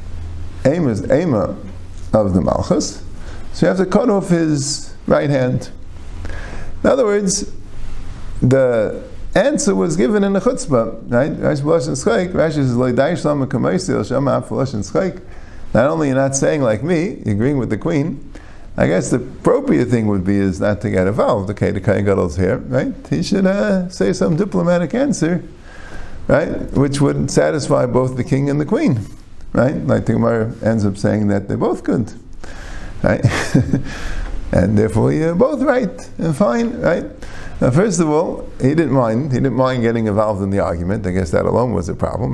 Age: 50-69